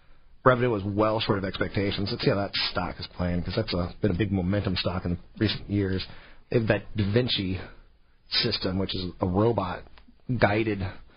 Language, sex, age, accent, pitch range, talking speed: English, male, 40-59, American, 90-120 Hz, 185 wpm